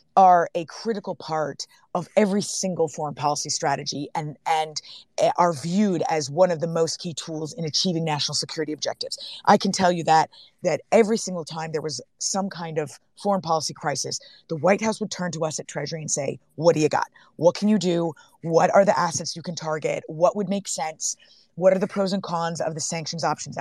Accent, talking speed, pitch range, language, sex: American, 210 wpm, 165-205 Hz, English, female